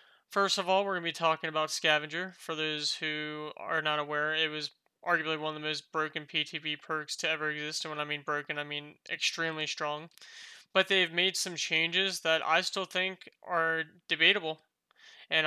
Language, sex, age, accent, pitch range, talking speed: English, male, 20-39, American, 155-175 Hz, 195 wpm